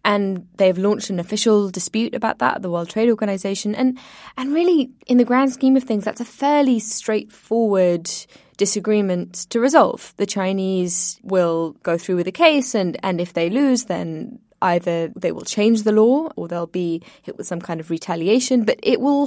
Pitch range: 180-230 Hz